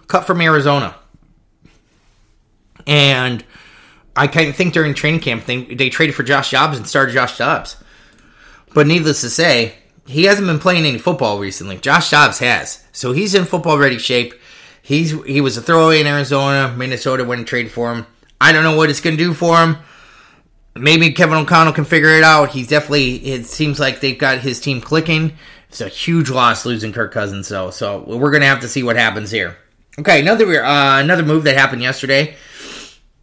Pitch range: 115-155 Hz